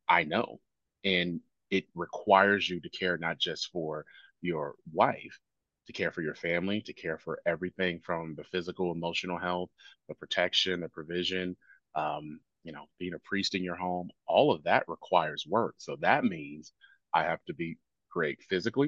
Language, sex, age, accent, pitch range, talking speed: English, male, 30-49, American, 85-95 Hz, 170 wpm